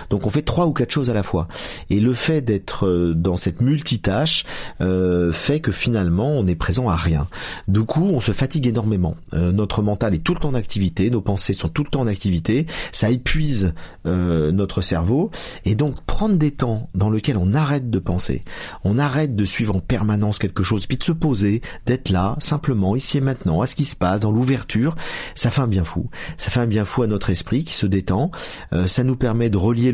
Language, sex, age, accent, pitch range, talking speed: French, male, 40-59, French, 95-125 Hz, 225 wpm